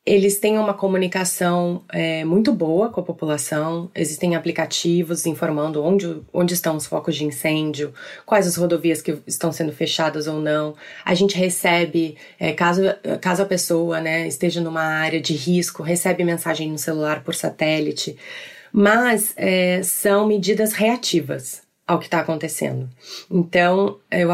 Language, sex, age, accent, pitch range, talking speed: Portuguese, female, 20-39, Brazilian, 160-200 Hz, 140 wpm